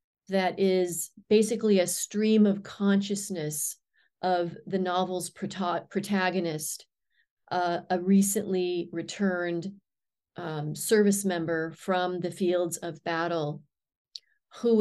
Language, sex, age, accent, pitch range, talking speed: English, female, 40-59, American, 175-200 Hz, 95 wpm